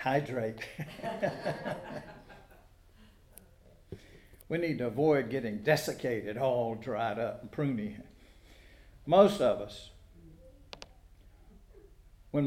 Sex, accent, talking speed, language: male, American, 75 wpm, English